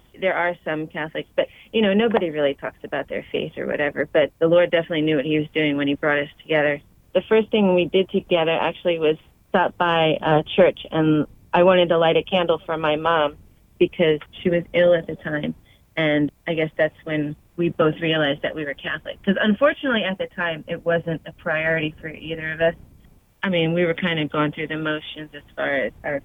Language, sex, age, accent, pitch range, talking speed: English, female, 30-49, American, 150-170 Hz, 220 wpm